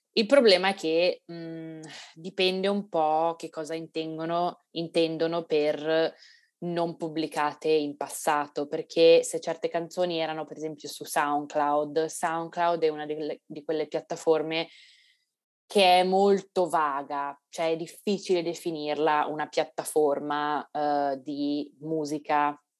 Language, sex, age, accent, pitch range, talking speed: Italian, female, 20-39, native, 145-165 Hz, 120 wpm